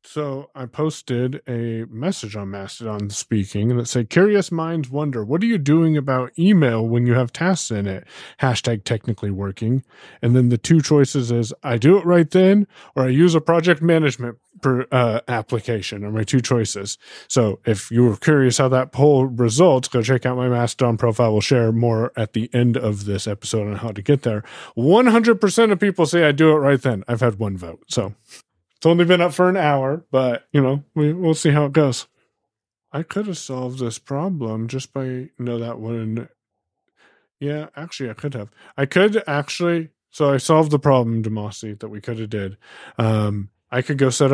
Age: 30-49